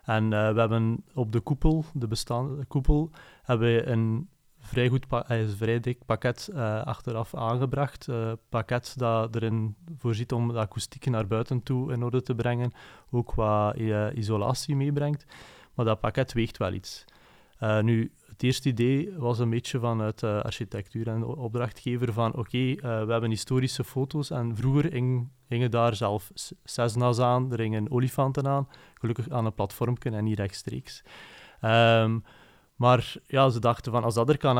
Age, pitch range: 30-49, 110-130 Hz